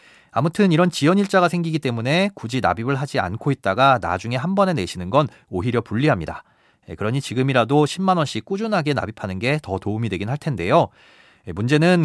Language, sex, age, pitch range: Korean, male, 30-49, 115-170 Hz